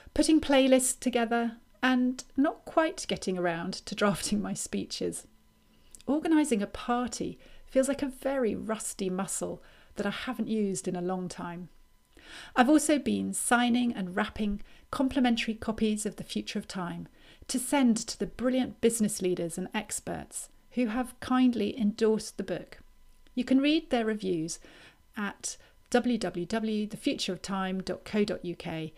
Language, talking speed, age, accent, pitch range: English, 135 wpm, 40-59, British, 190-255 Hz